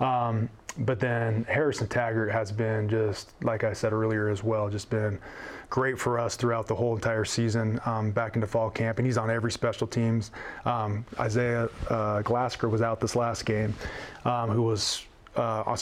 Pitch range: 115-130 Hz